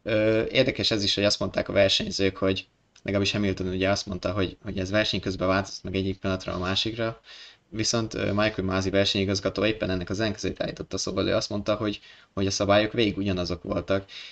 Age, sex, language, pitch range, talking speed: 20-39, male, Hungarian, 95-110 Hz, 190 wpm